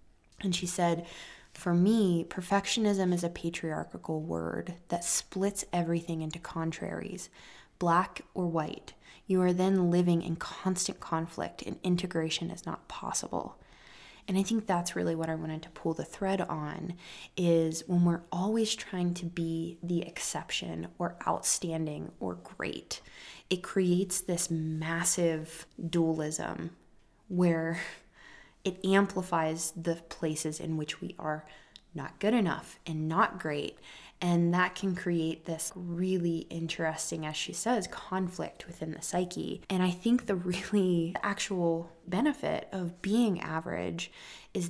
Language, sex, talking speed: English, female, 135 wpm